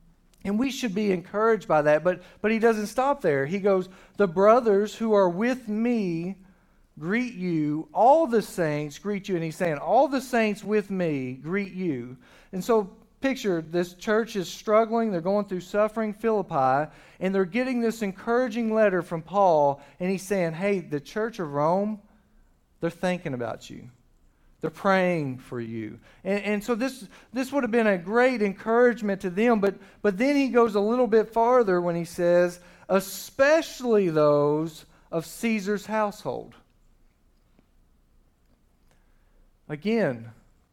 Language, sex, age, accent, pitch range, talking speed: English, male, 40-59, American, 160-220 Hz, 155 wpm